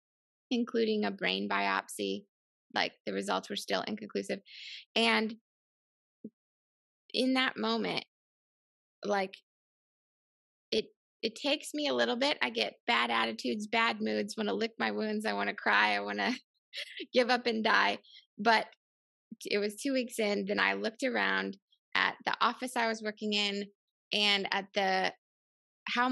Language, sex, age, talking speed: English, female, 20-39, 150 wpm